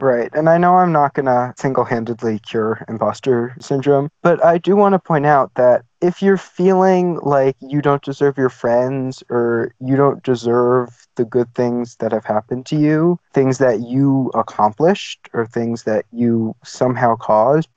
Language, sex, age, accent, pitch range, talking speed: English, male, 20-39, American, 120-150 Hz, 175 wpm